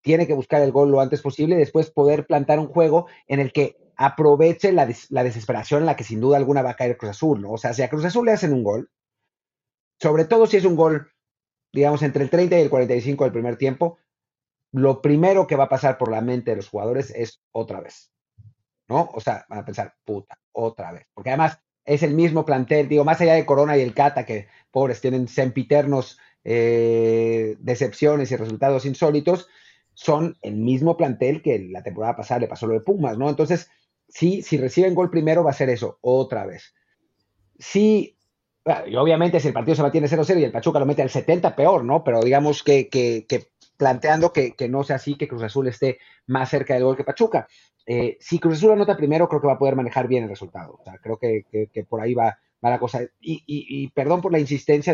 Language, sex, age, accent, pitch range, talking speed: Spanish, male, 40-59, Mexican, 125-155 Hz, 225 wpm